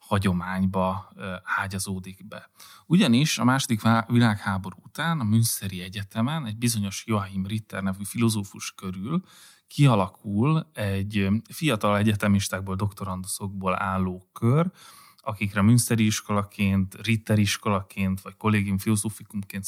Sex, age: male, 30-49